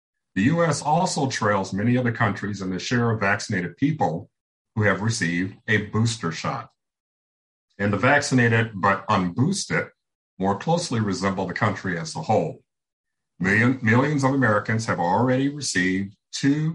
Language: English